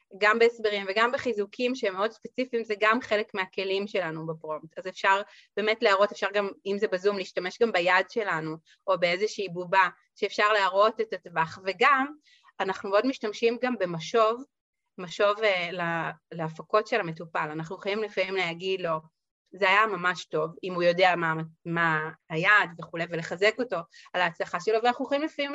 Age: 30-49